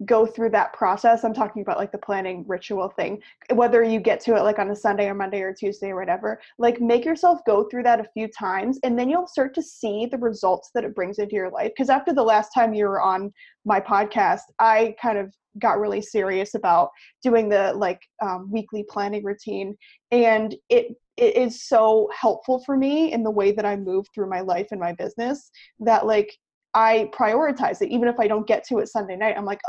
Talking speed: 220 wpm